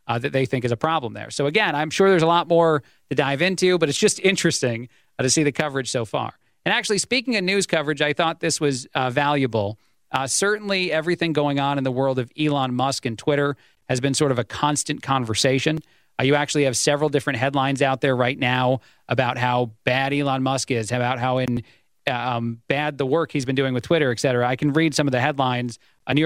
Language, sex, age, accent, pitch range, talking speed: English, male, 40-59, American, 135-165 Hz, 230 wpm